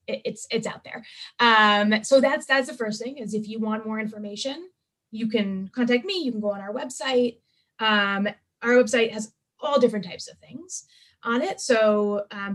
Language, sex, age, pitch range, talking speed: English, female, 20-39, 205-245 Hz, 190 wpm